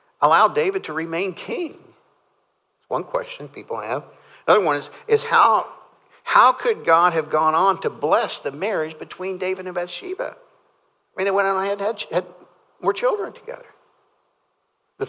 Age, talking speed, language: 60-79, 165 wpm, English